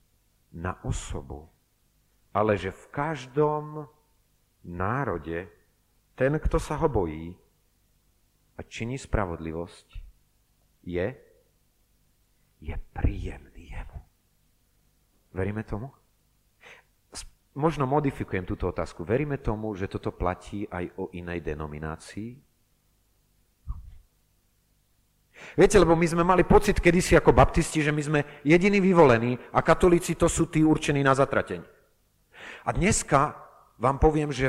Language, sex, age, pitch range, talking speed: Slovak, male, 40-59, 95-145 Hz, 105 wpm